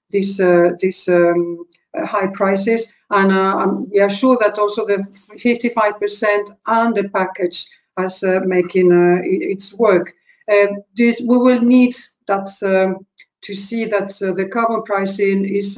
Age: 50-69